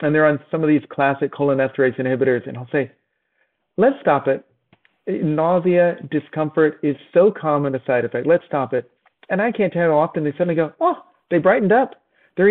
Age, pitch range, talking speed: 40-59, 135-175 Hz, 190 wpm